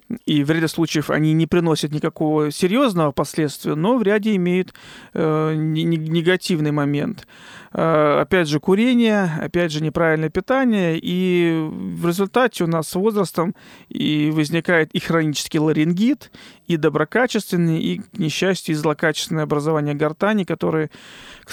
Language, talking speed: Russian, 125 wpm